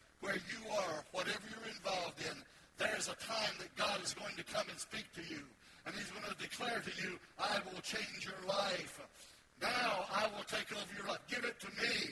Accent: American